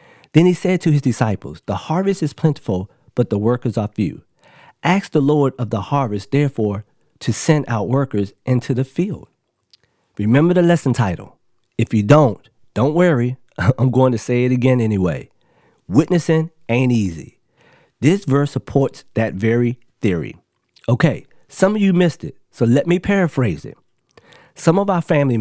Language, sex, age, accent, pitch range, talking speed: English, male, 40-59, American, 115-150 Hz, 165 wpm